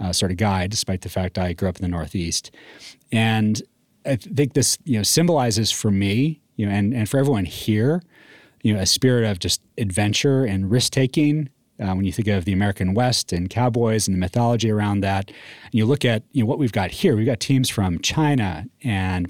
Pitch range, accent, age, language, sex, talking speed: 100-125 Hz, American, 30-49, English, male, 220 wpm